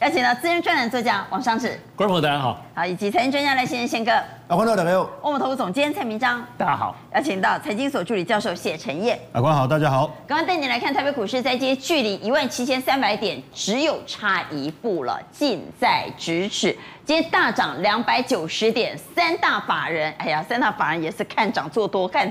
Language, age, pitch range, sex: Chinese, 30-49, 190-285 Hz, female